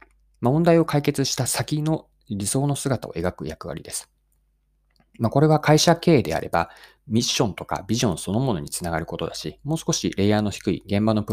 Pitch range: 100-150 Hz